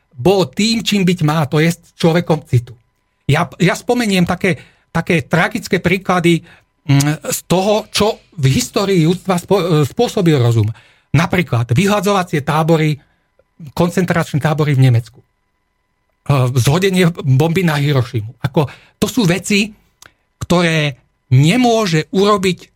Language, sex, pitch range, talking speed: Czech, male, 140-185 Hz, 110 wpm